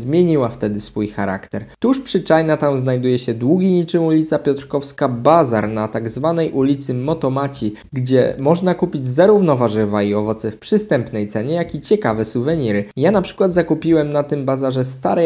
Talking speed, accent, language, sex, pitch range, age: 165 wpm, native, Polish, male, 115-160 Hz, 20-39